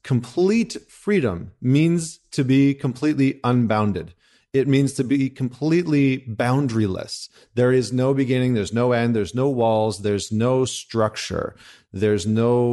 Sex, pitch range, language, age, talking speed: male, 100-130 Hz, English, 40-59, 130 wpm